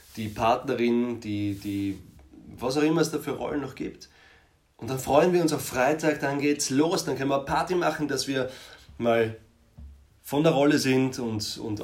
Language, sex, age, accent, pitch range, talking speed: German, male, 30-49, German, 95-125 Hz, 190 wpm